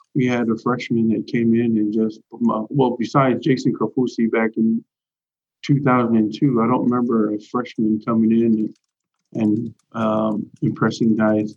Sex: male